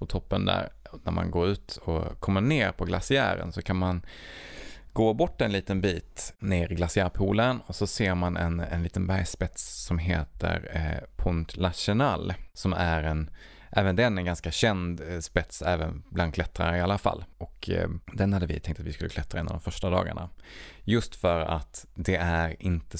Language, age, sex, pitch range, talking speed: Swedish, 20-39, male, 80-95 Hz, 195 wpm